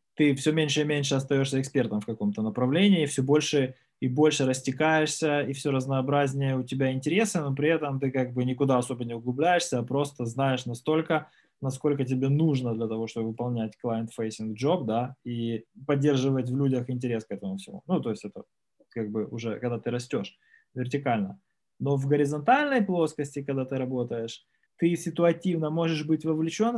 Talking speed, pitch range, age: 170 wpm, 125-155 Hz, 20-39